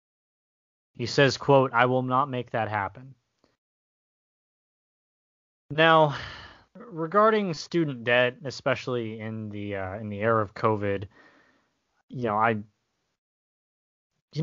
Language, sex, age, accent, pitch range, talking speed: English, male, 20-39, American, 105-140 Hz, 110 wpm